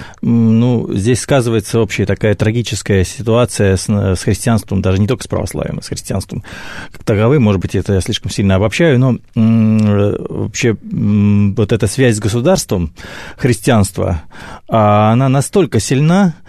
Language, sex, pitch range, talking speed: Russian, male, 100-135 Hz, 135 wpm